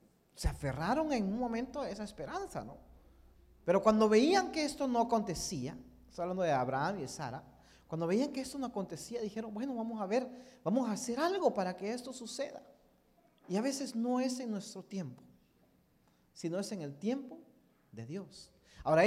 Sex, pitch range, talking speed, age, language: male, 150-250 Hz, 180 wpm, 40-59, Spanish